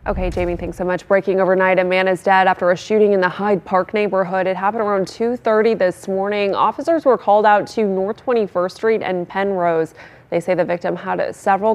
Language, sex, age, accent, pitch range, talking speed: English, female, 20-39, American, 180-210 Hz, 210 wpm